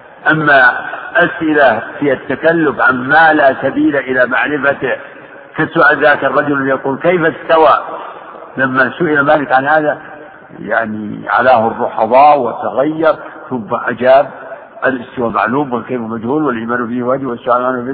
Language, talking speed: Arabic, 125 wpm